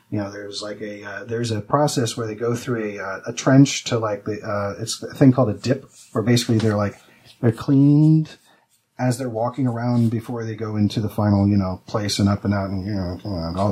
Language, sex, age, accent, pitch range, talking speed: English, male, 30-49, American, 105-125 Hz, 235 wpm